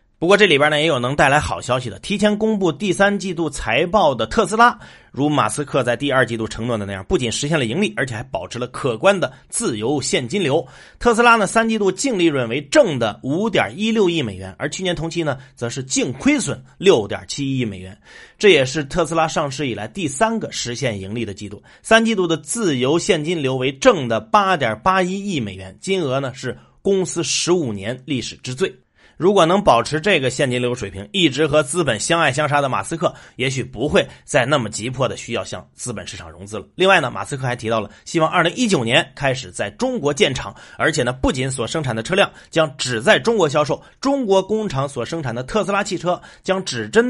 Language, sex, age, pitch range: Chinese, male, 30-49, 120-190 Hz